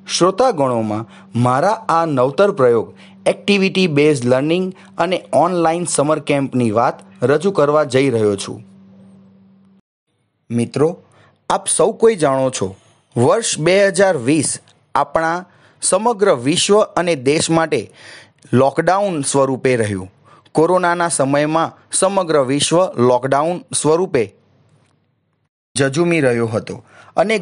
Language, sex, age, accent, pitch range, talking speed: Gujarati, male, 30-49, native, 130-180 Hz, 100 wpm